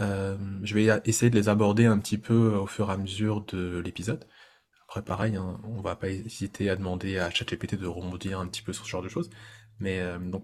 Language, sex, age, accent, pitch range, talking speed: French, male, 20-39, French, 100-115 Hz, 240 wpm